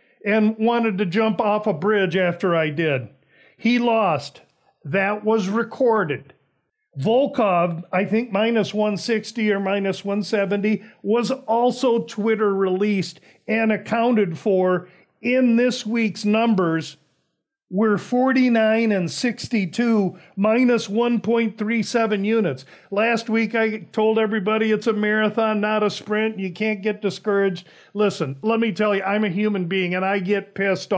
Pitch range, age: 185-220 Hz, 50-69